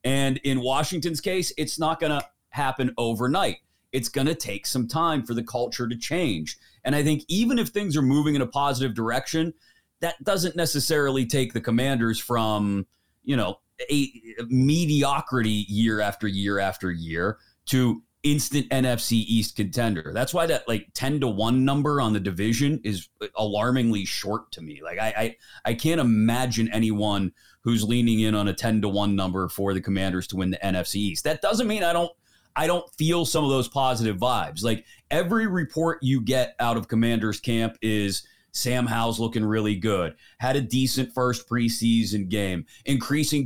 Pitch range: 110-140 Hz